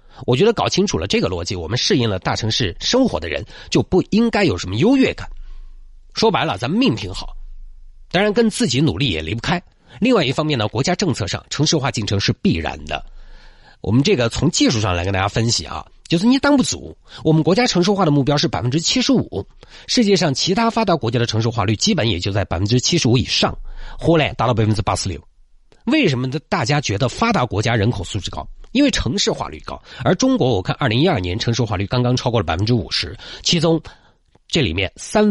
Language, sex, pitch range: Chinese, male, 105-160 Hz